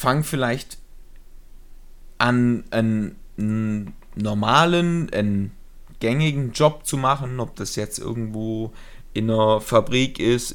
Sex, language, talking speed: male, German, 100 wpm